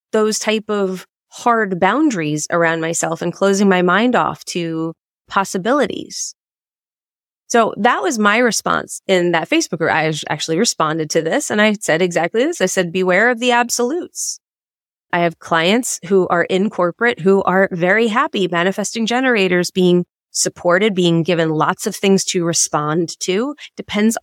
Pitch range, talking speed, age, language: 175-240 Hz, 155 wpm, 20-39, English